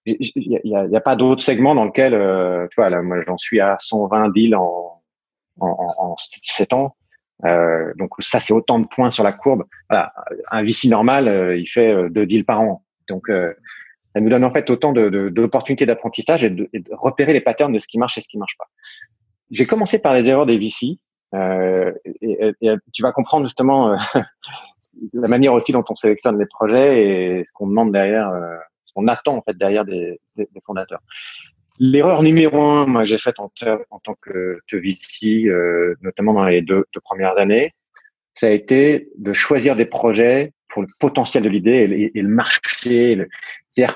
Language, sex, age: French, male, 40-59